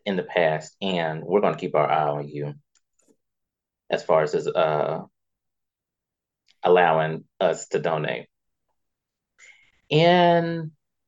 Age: 30-49